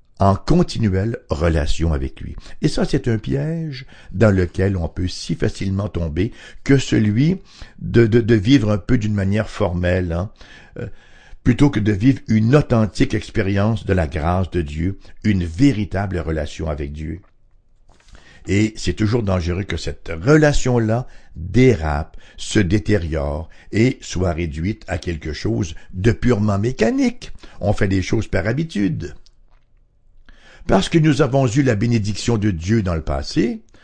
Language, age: English, 60-79